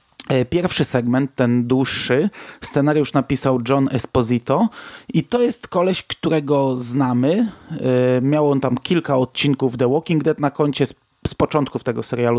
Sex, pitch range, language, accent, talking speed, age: male, 125-150 Hz, Polish, native, 135 wpm, 30-49